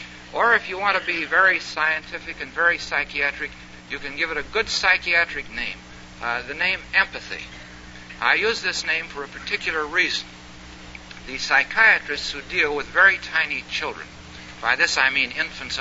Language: English